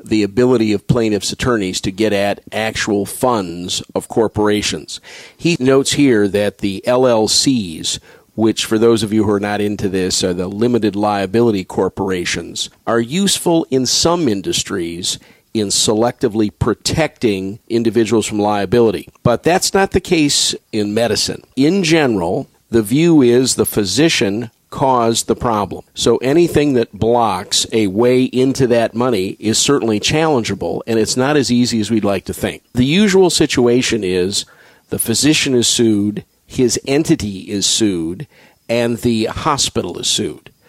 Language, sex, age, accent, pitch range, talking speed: English, male, 50-69, American, 105-130 Hz, 145 wpm